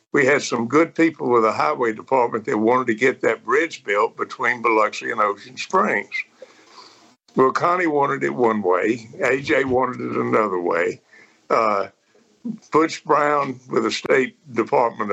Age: 60-79